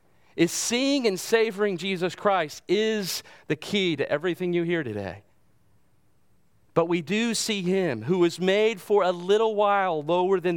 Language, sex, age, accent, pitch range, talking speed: English, male, 40-59, American, 145-185 Hz, 160 wpm